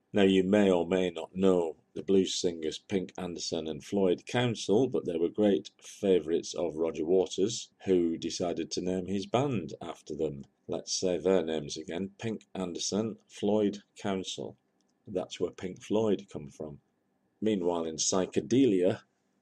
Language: English